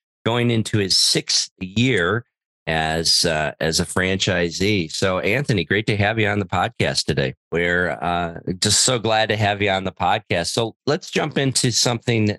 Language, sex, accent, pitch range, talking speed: English, male, American, 80-100 Hz, 175 wpm